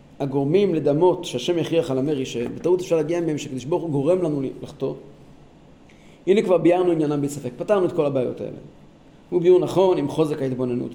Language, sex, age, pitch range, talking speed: Hebrew, male, 40-59, 145-185 Hz, 175 wpm